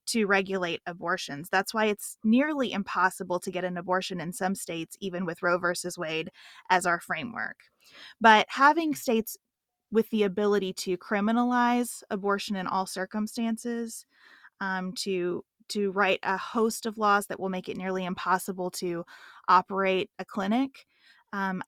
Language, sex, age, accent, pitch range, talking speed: English, female, 20-39, American, 185-230 Hz, 150 wpm